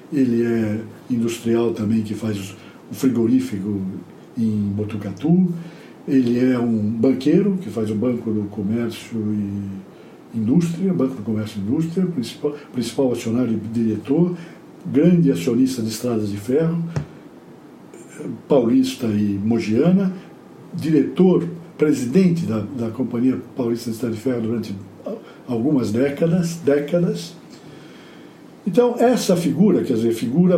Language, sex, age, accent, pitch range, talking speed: Portuguese, male, 60-79, Brazilian, 115-165 Hz, 120 wpm